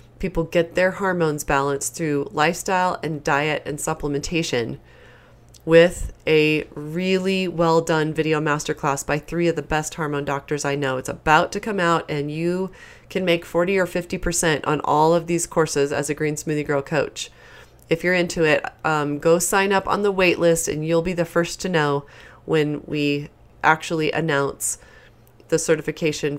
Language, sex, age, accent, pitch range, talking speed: English, female, 30-49, American, 150-175 Hz, 170 wpm